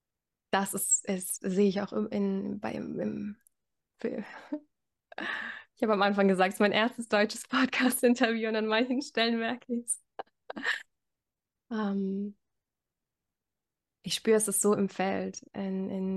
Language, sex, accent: German, female, German